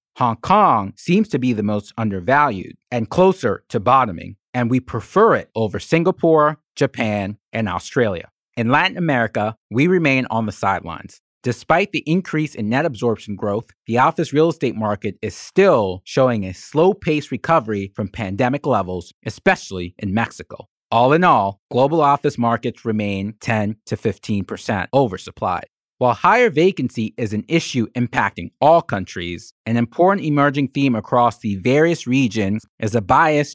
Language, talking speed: English, 150 wpm